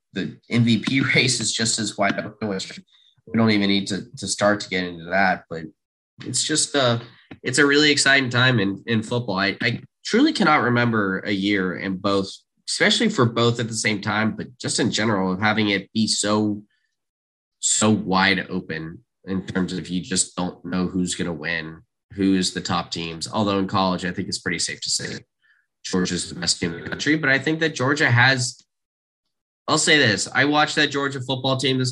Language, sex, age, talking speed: English, male, 20-39, 200 wpm